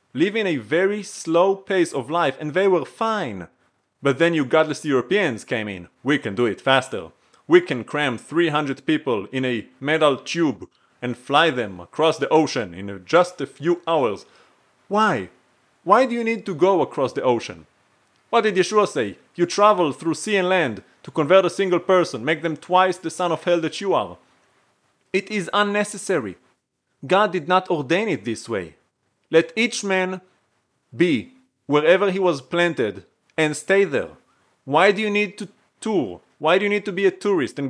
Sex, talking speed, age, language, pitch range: male, 180 wpm, 30-49, English, 140-195 Hz